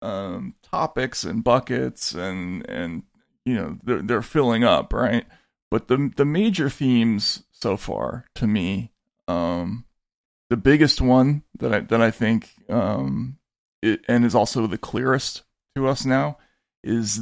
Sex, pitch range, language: male, 105-125 Hz, English